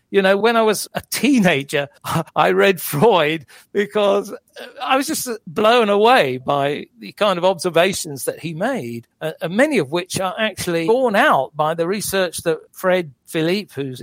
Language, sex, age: English, male, 50-69